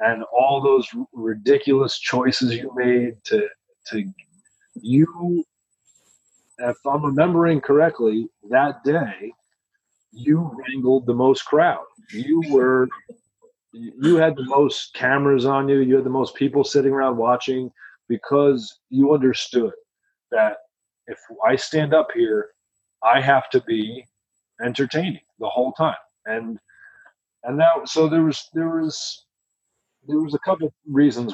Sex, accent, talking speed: male, American, 130 wpm